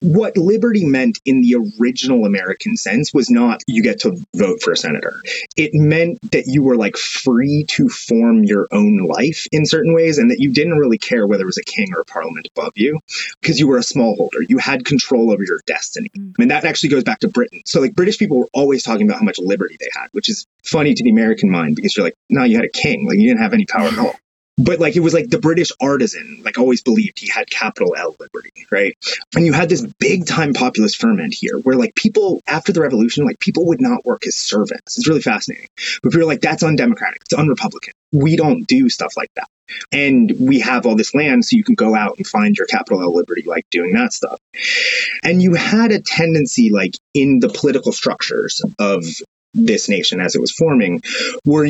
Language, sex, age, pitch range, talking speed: English, male, 30-49, 165-245 Hz, 230 wpm